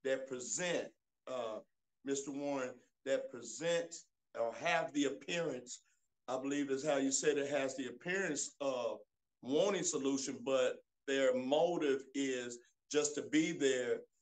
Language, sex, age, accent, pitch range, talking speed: English, male, 50-69, American, 135-175 Hz, 135 wpm